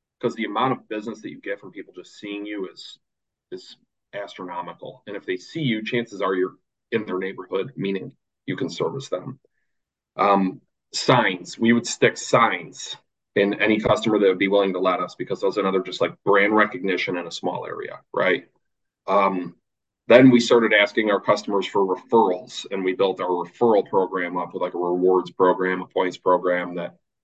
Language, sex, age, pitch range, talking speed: English, male, 30-49, 95-120 Hz, 185 wpm